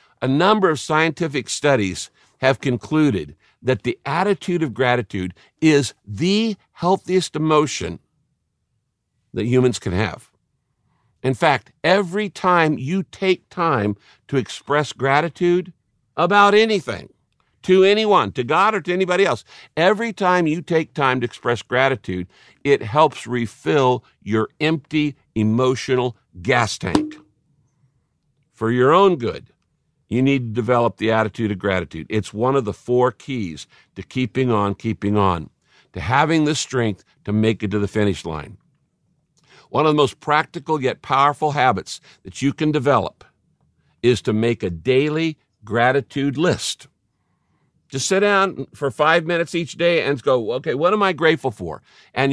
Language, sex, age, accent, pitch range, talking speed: English, male, 60-79, American, 115-160 Hz, 145 wpm